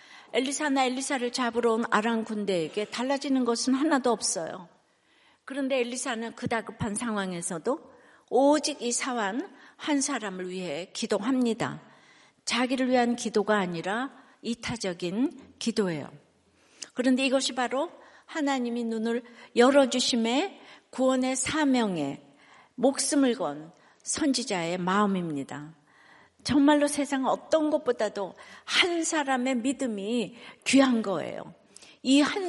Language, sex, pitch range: Korean, female, 215-280 Hz